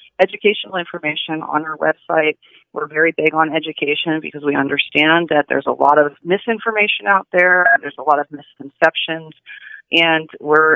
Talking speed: 160 wpm